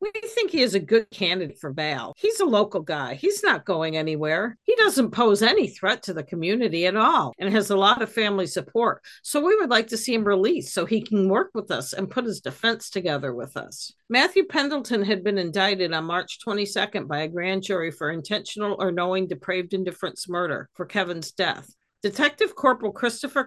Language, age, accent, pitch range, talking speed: English, 50-69, American, 175-220 Hz, 205 wpm